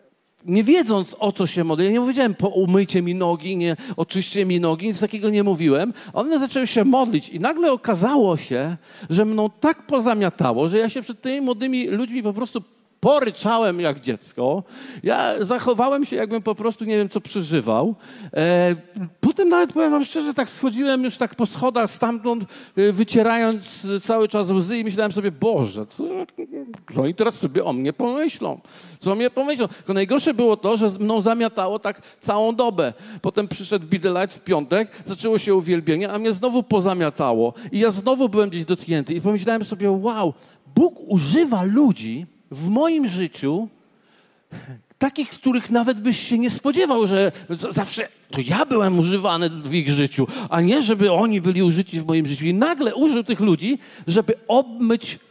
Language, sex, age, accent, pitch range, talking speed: Polish, male, 50-69, native, 180-240 Hz, 175 wpm